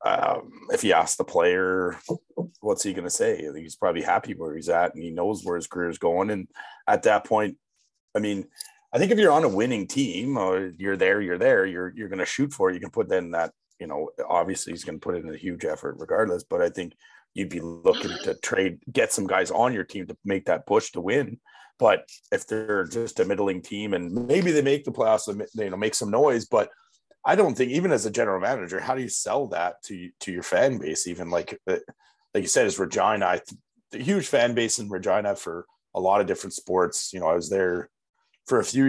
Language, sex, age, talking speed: English, male, 30-49, 240 wpm